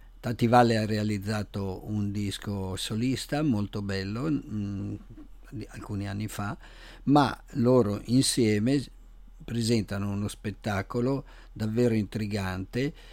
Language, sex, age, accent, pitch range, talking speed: English, male, 50-69, Italian, 105-120 Hz, 85 wpm